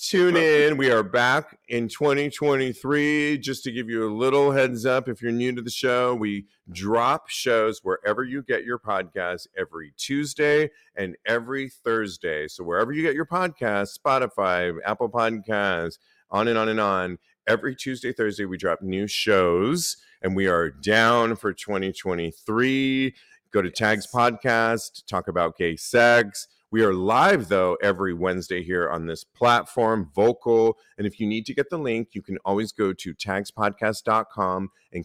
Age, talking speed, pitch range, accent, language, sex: 40-59, 165 wpm, 100-135 Hz, American, English, male